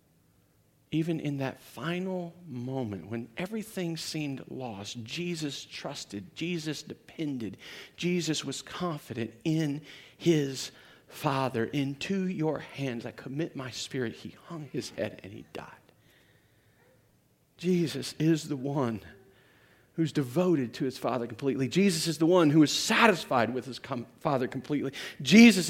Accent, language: American, English